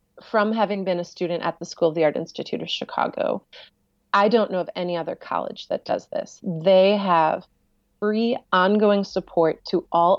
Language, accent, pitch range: English, American, 175-220 Hz